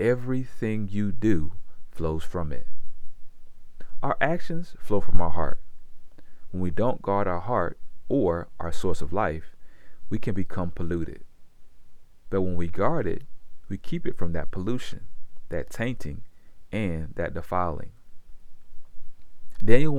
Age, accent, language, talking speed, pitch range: 40-59, American, English, 130 wpm, 85-110 Hz